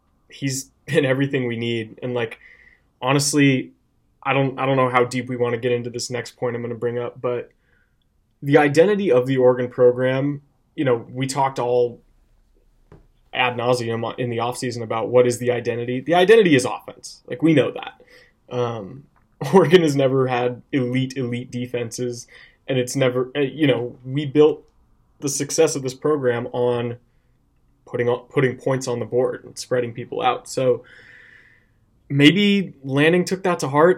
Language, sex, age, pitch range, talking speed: English, male, 20-39, 120-140 Hz, 170 wpm